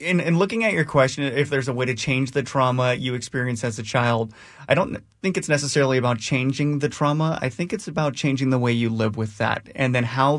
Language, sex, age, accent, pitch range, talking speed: English, male, 30-49, American, 115-135 Hz, 235 wpm